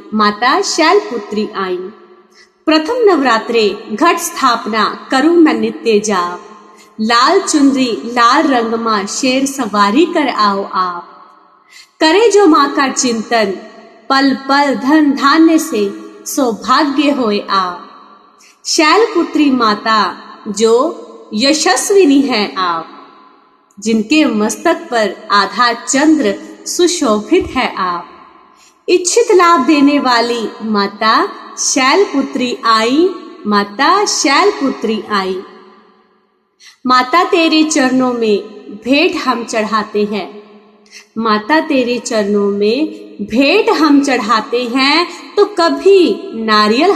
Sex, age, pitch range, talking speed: female, 30-49, 210-310 Hz, 100 wpm